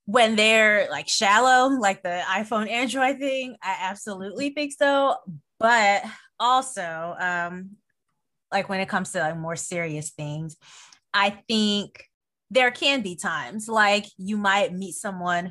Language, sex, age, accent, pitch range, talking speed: English, female, 20-39, American, 175-205 Hz, 140 wpm